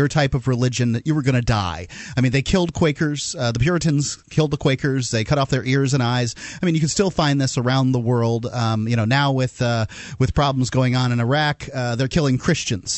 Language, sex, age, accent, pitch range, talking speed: English, male, 30-49, American, 130-195 Hz, 245 wpm